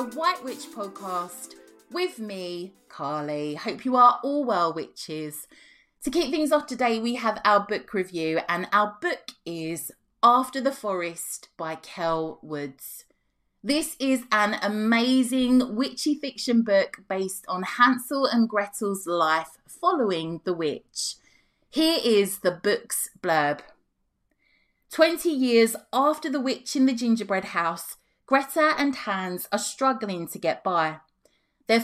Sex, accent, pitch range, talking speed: female, British, 175-255 Hz, 135 wpm